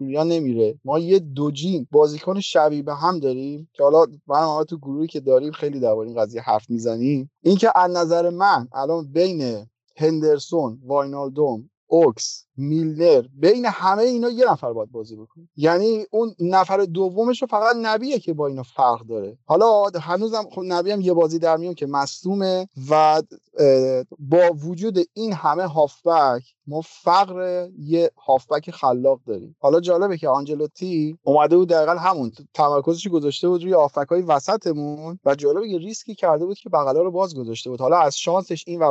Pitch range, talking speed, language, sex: 145-195 Hz, 170 wpm, Persian, male